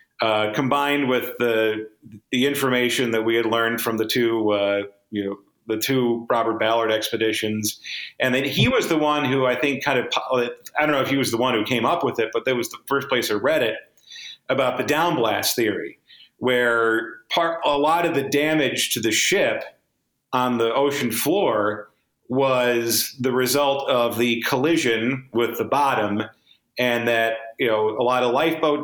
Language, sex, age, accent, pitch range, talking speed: English, male, 40-59, American, 115-140 Hz, 185 wpm